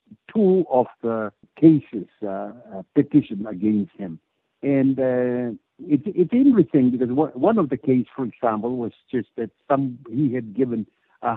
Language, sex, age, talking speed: English, male, 60-79, 150 wpm